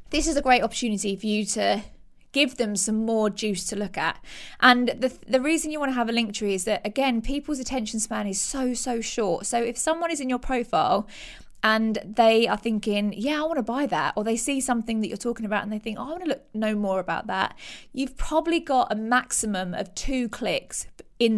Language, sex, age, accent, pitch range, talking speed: English, female, 20-39, British, 210-260 Hz, 235 wpm